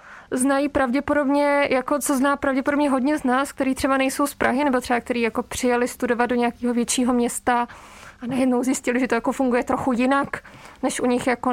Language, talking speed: Czech, 195 wpm